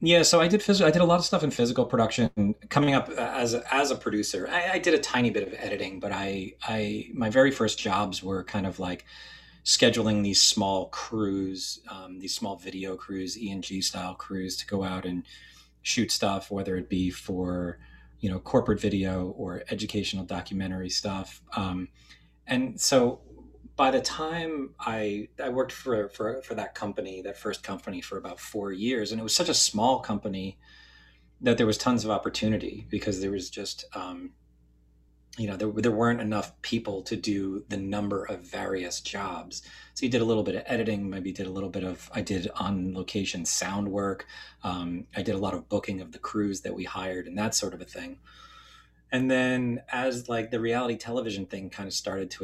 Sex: male